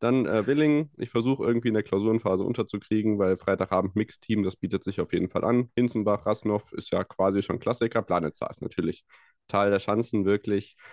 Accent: German